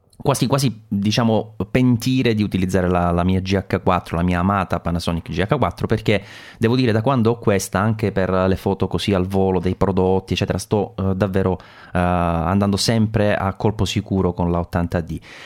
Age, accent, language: 30-49, Italian, English